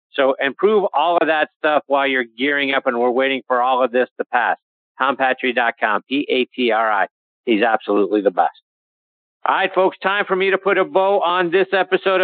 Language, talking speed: English, 185 wpm